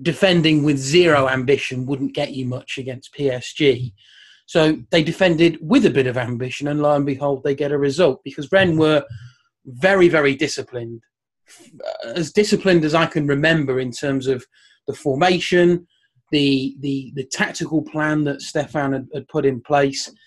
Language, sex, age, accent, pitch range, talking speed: English, male, 30-49, British, 135-165 Hz, 165 wpm